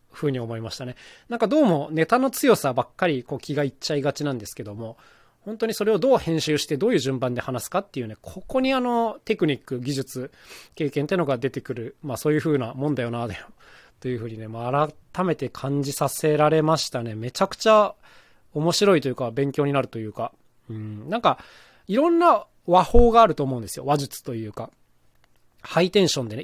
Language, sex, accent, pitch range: Japanese, male, native, 125-200 Hz